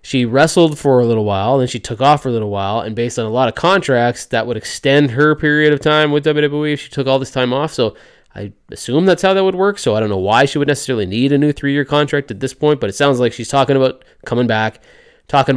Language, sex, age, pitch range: English, male, 20-39, 110-140 Hz